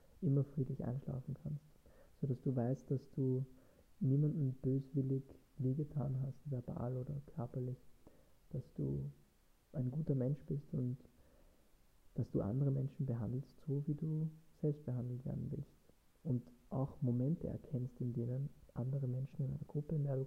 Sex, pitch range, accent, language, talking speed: male, 120-140 Hz, German, German, 145 wpm